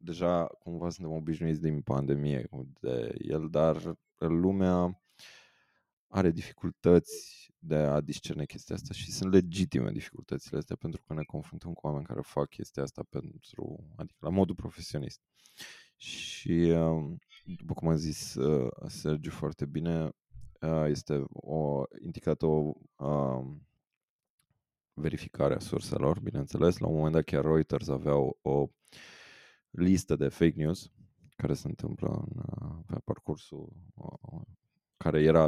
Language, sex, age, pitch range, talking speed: Romanian, male, 20-39, 75-95 Hz, 125 wpm